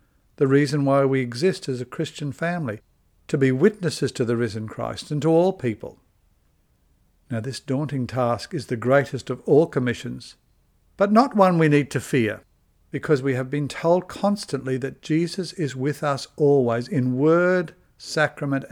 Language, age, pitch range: English, 60-79, 120-155 Hz